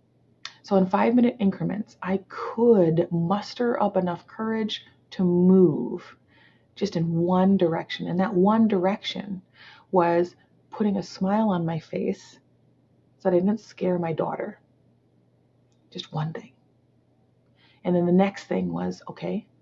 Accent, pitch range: American, 170-200 Hz